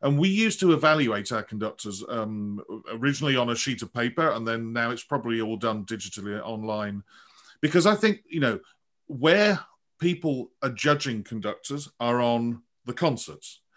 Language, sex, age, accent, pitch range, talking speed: English, male, 40-59, British, 115-155 Hz, 160 wpm